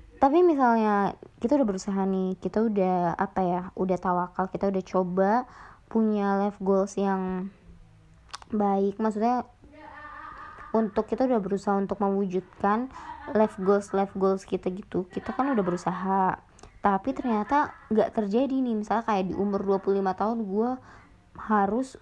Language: Indonesian